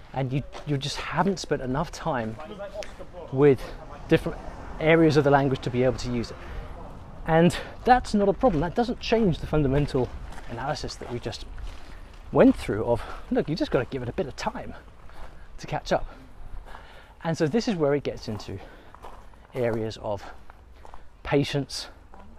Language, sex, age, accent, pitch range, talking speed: English, male, 30-49, British, 110-160 Hz, 165 wpm